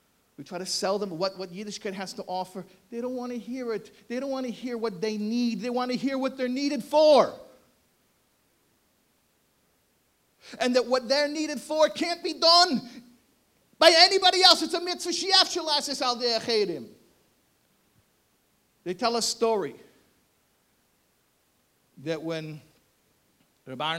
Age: 50-69